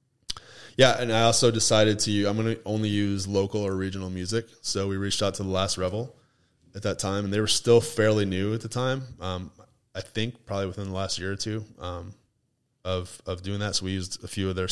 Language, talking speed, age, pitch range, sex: English, 230 wpm, 20-39, 95-115 Hz, male